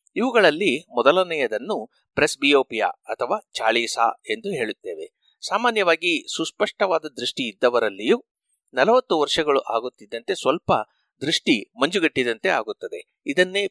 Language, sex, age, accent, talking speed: Kannada, male, 60-79, native, 85 wpm